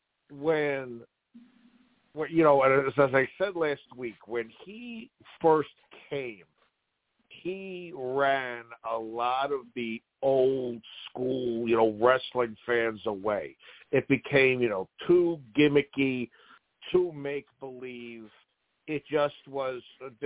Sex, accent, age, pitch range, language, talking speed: male, American, 50-69, 120-150 Hz, English, 110 wpm